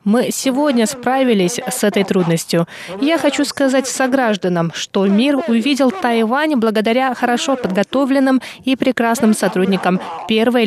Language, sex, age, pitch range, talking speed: Russian, female, 20-39, 195-260 Hz, 120 wpm